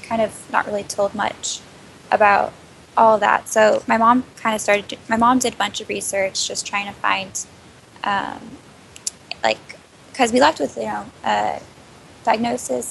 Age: 10-29